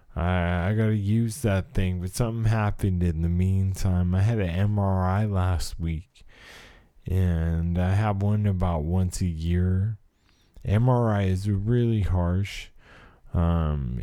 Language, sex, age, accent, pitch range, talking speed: English, male, 20-39, American, 85-100 Hz, 135 wpm